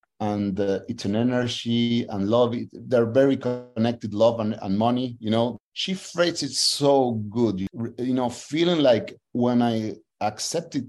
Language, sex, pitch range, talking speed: English, male, 110-135 Hz, 160 wpm